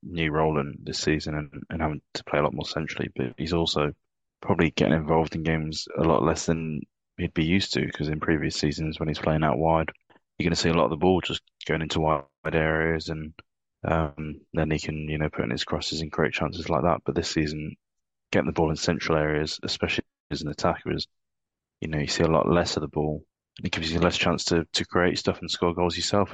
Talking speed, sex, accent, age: 245 wpm, male, British, 20-39